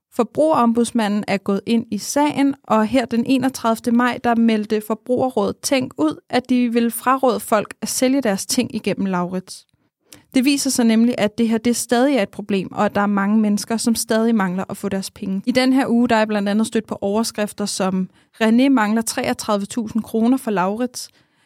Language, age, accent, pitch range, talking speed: Danish, 20-39, native, 205-245 Hz, 195 wpm